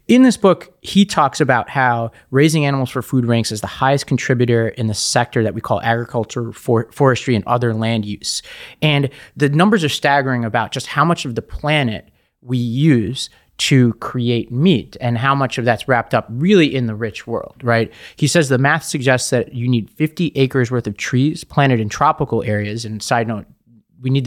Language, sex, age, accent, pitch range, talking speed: English, male, 30-49, American, 115-145 Hz, 200 wpm